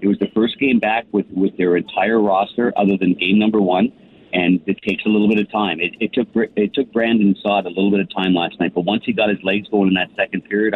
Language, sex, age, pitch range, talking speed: English, male, 50-69, 95-110 Hz, 285 wpm